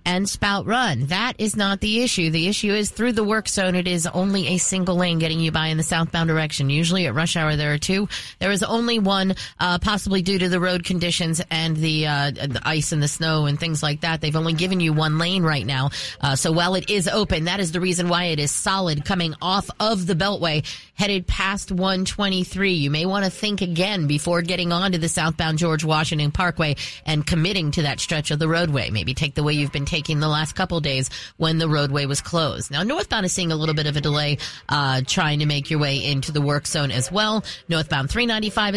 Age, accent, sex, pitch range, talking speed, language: 30-49, American, female, 155-190 Hz, 235 wpm, English